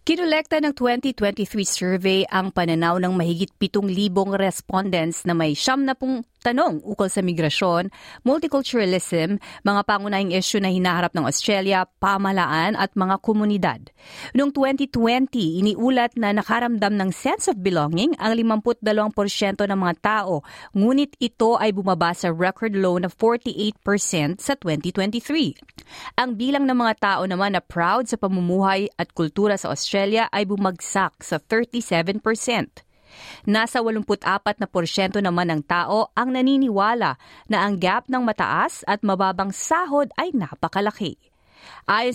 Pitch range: 180-230 Hz